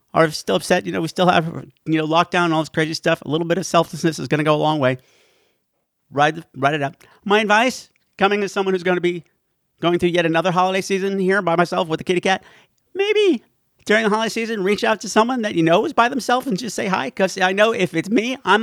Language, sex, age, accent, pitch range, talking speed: English, male, 50-69, American, 150-210 Hz, 255 wpm